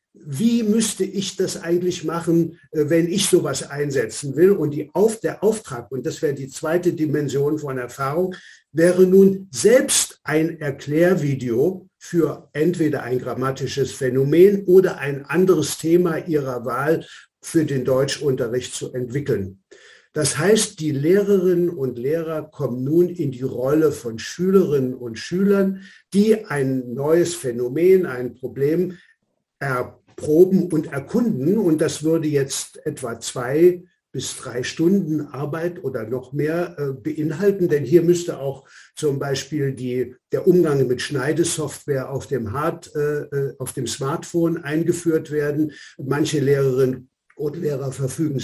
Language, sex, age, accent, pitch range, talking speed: German, male, 60-79, German, 135-175 Hz, 135 wpm